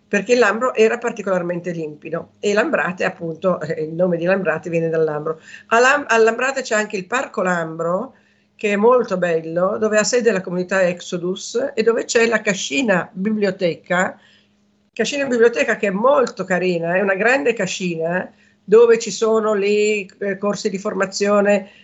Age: 50-69